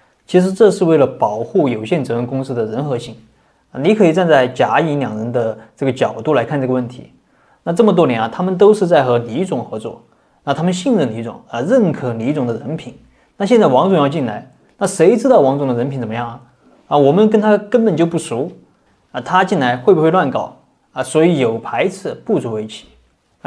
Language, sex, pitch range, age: Chinese, male, 120-155 Hz, 20-39